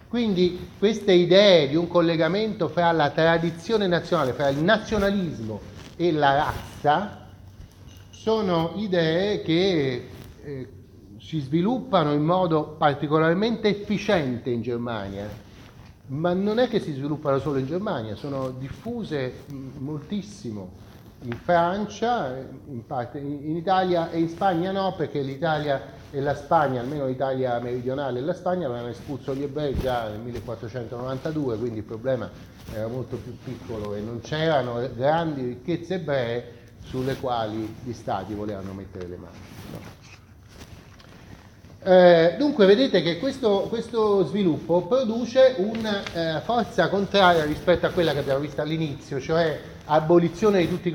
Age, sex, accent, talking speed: 40-59, male, native, 130 wpm